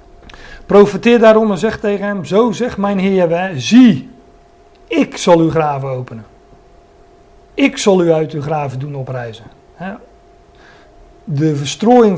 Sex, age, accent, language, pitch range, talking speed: male, 40-59, Dutch, Dutch, 145-195 Hz, 130 wpm